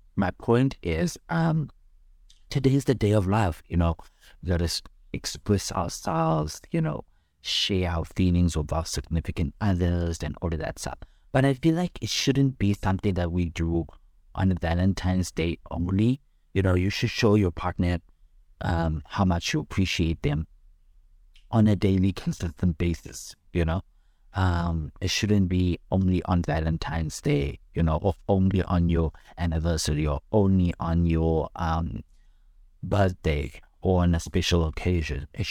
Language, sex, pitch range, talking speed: English, male, 80-100 Hz, 155 wpm